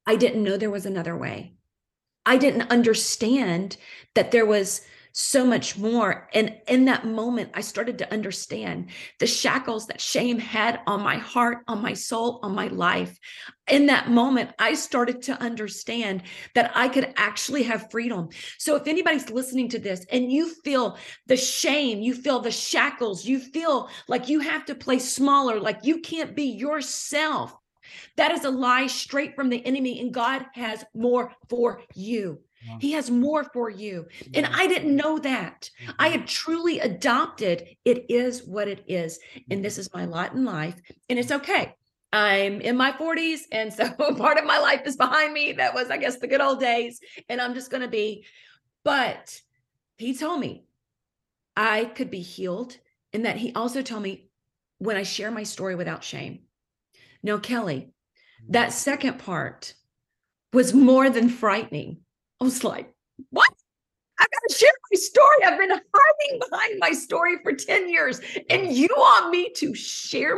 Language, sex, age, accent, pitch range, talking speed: English, female, 30-49, American, 215-280 Hz, 175 wpm